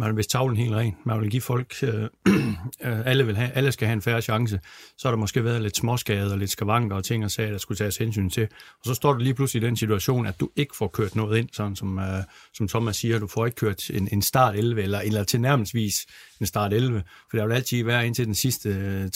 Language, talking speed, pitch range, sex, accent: Danish, 260 wpm, 105-120 Hz, male, native